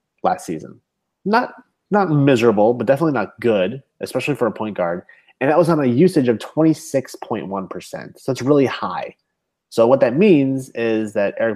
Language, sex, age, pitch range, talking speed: English, male, 30-49, 105-140 Hz, 170 wpm